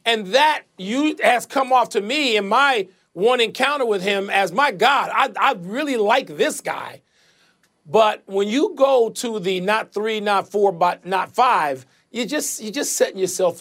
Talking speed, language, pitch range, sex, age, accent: 185 wpm, English, 200-280 Hz, male, 40-59, American